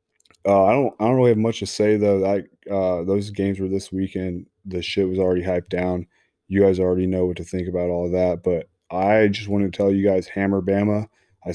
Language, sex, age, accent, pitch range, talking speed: English, male, 20-39, American, 95-105 Hz, 240 wpm